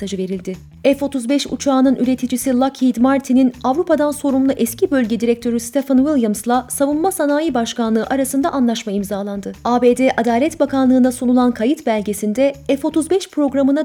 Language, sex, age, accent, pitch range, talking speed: Turkish, female, 30-49, native, 240-290 Hz, 115 wpm